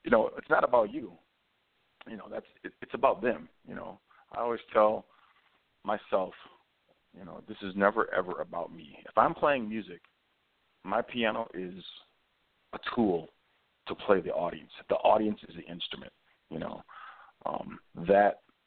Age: 40-59